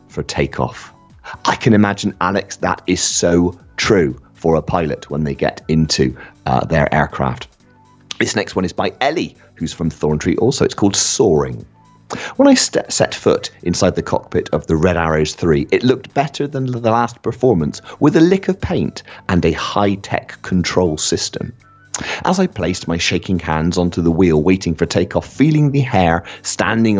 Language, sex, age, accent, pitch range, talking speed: English, male, 40-59, British, 80-100 Hz, 175 wpm